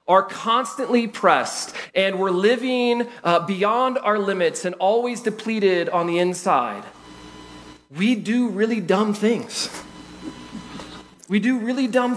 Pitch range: 155-245 Hz